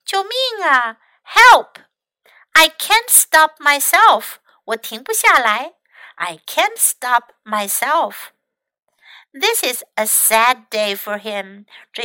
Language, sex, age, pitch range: Chinese, female, 60-79, 215-305 Hz